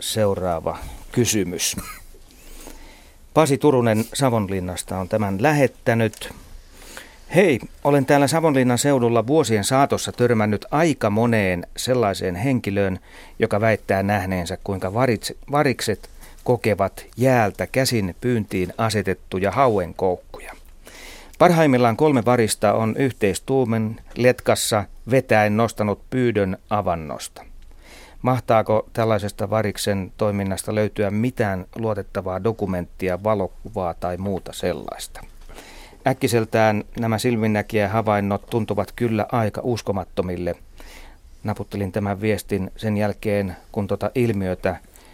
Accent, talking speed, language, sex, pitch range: native, 95 wpm, Finnish, male, 95-115 Hz